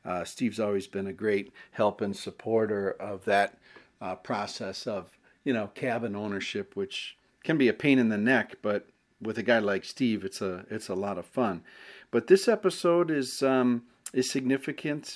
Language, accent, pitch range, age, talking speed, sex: English, American, 105-130 Hz, 40-59, 180 wpm, male